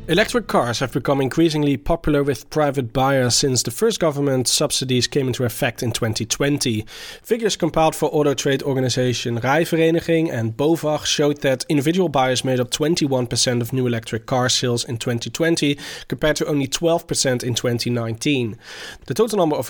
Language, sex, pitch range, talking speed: English, male, 125-155 Hz, 160 wpm